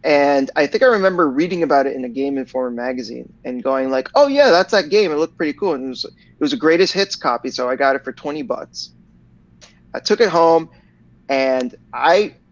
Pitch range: 135-180 Hz